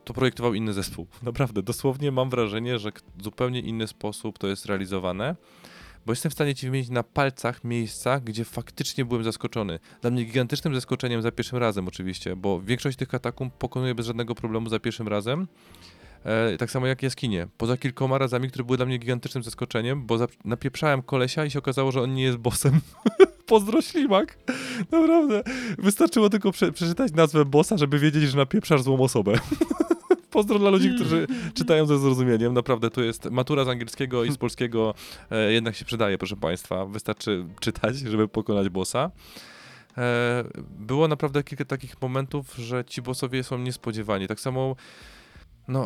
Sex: male